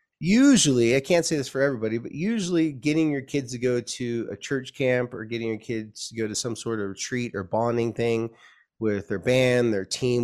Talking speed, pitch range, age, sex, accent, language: 215 wpm, 110-135 Hz, 30-49, male, American, English